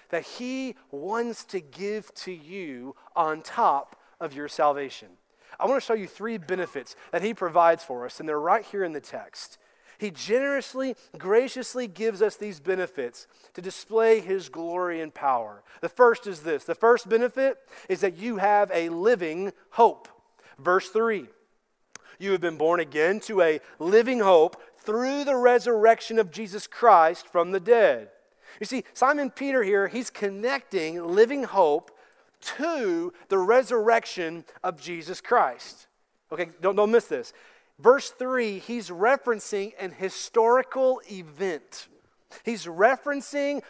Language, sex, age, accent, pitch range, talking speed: English, male, 40-59, American, 180-245 Hz, 145 wpm